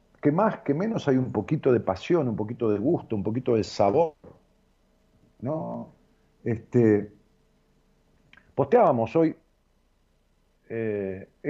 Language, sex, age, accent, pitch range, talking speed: Spanish, male, 50-69, Argentinian, 95-130 Hz, 115 wpm